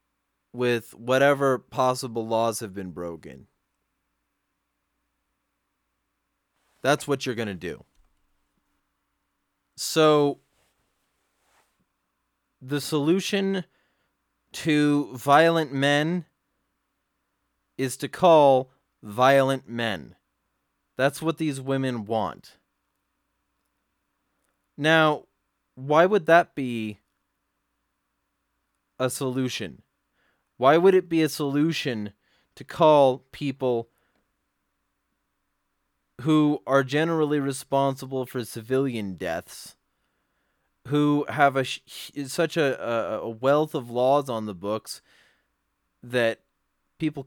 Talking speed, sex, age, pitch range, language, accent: 85 wpm, male, 20-39, 120-150 Hz, English, American